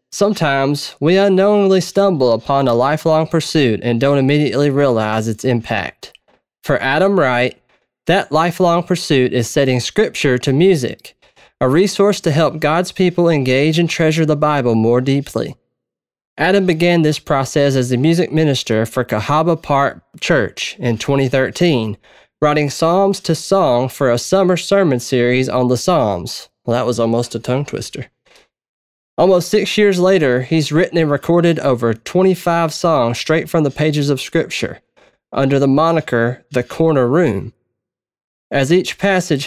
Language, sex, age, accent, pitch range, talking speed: English, male, 20-39, American, 125-170 Hz, 145 wpm